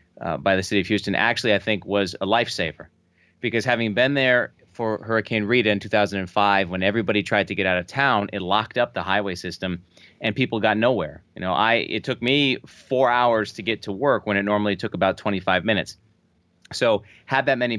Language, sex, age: English, male, 30-49